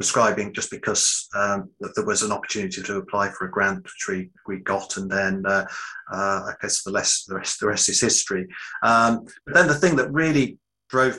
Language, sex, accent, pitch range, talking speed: English, male, British, 100-125 Hz, 210 wpm